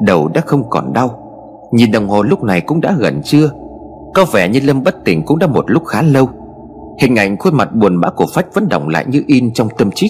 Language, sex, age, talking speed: Vietnamese, male, 30-49, 250 wpm